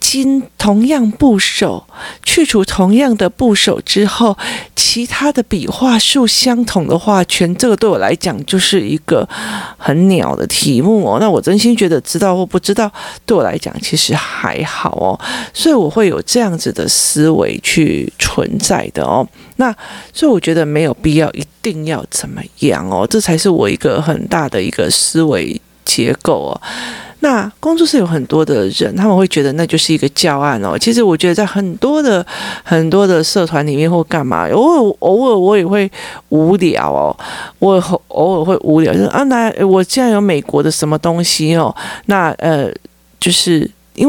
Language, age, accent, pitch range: Chinese, 40-59, native, 160-220 Hz